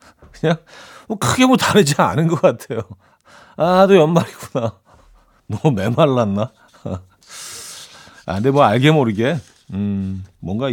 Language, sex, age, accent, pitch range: Korean, male, 40-59, native, 95-135 Hz